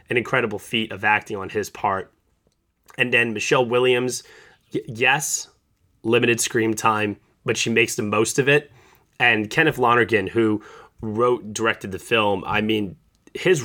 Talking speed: 150 wpm